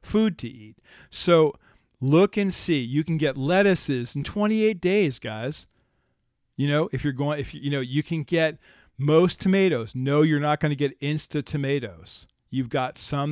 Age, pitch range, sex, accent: 40-59, 125-160 Hz, male, American